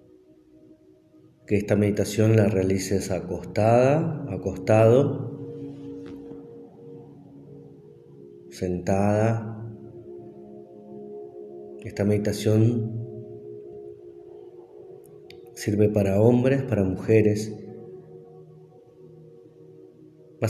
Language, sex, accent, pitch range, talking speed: Spanish, male, Argentinian, 95-115 Hz, 45 wpm